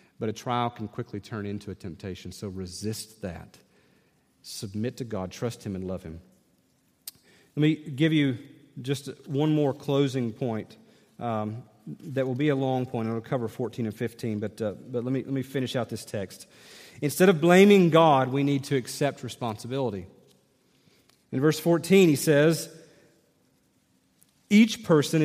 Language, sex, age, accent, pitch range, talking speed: English, male, 40-59, American, 120-175 Hz, 165 wpm